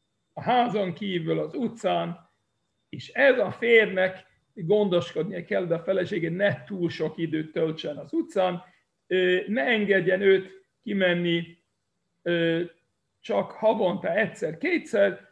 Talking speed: 115 wpm